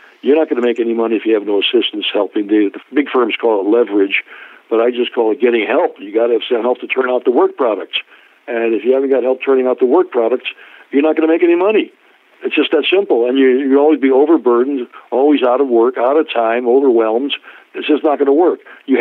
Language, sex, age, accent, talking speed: English, male, 60-79, American, 260 wpm